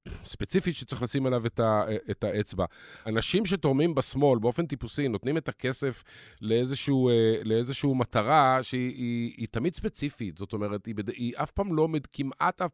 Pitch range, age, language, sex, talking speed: 115-170 Hz, 50-69, Hebrew, male, 155 wpm